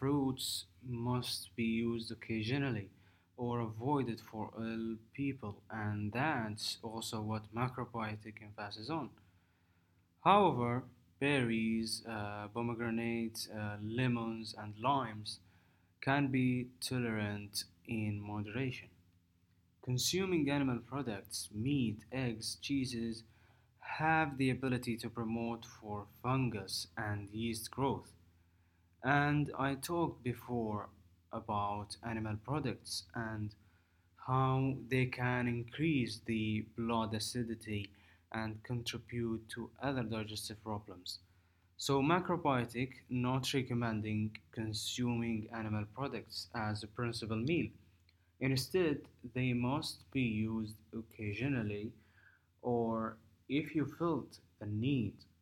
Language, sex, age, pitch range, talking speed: English, male, 20-39, 105-125 Hz, 95 wpm